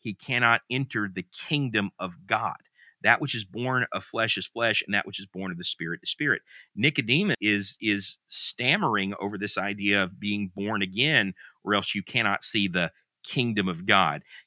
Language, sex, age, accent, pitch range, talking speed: English, male, 40-59, American, 95-125 Hz, 185 wpm